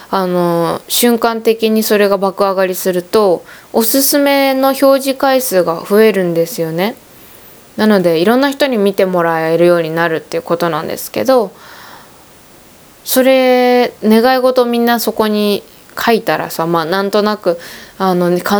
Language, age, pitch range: Japanese, 20-39, 175-240 Hz